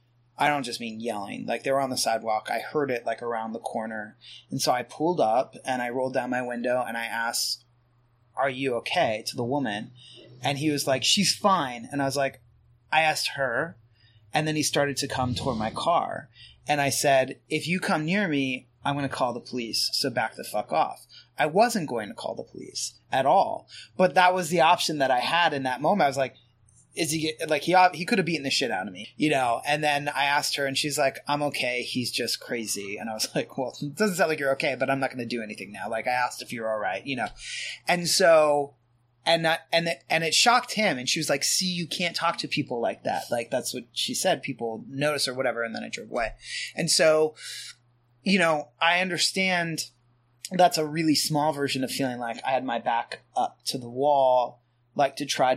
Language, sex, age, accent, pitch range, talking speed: English, male, 30-49, American, 120-155 Hz, 235 wpm